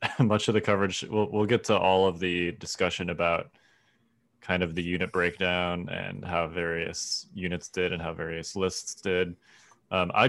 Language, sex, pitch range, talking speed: English, male, 85-105 Hz, 175 wpm